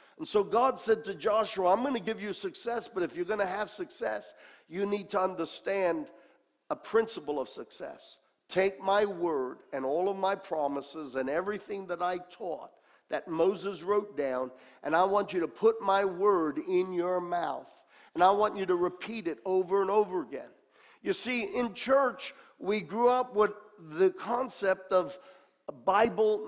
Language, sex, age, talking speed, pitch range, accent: English, male, 50-69, 175 wpm, 175-225 Hz, American